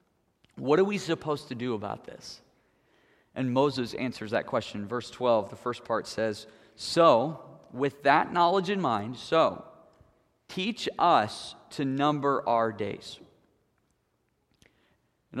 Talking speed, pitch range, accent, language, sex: 130 wpm, 110-135 Hz, American, English, male